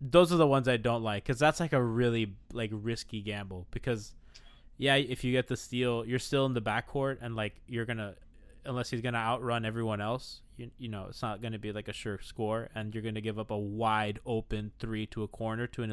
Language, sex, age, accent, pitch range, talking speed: English, male, 20-39, American, 105-125 Hz, 235 wpm